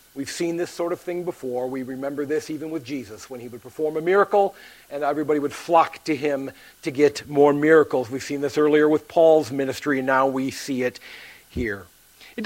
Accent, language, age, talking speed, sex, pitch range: American, English, 50-69, 205 wpm, male, 150-210 Hz